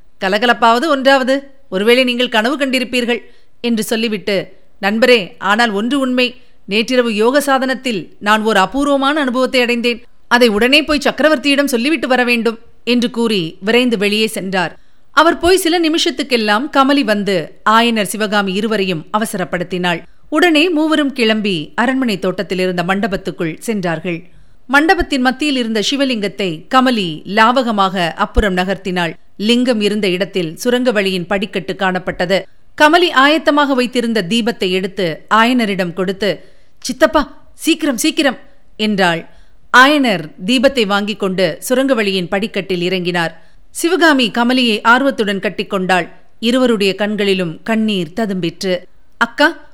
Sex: female